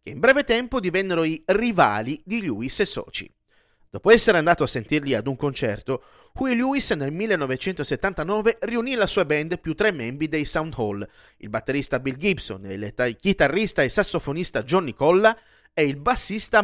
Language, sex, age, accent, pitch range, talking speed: Italian, male, 30-49, native, 145-220 Hz, 160 wpm